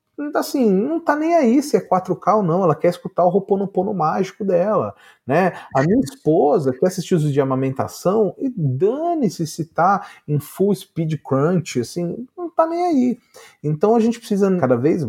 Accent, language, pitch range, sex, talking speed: Brazilian, Portuguese, 130-200 Hz, male, 180 wpm